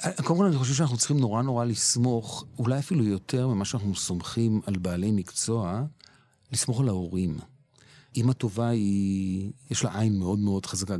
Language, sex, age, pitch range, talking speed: Hebrew, male, 40-59, 100-135 Hz, 165 wpm